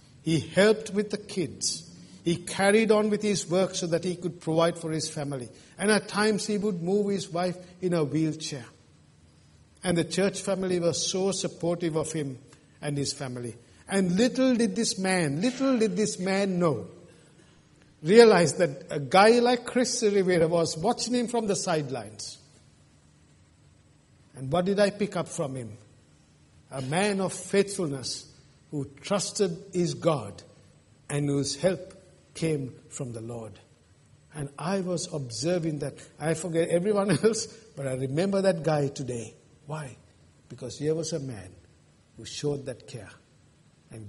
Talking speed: 155 wpm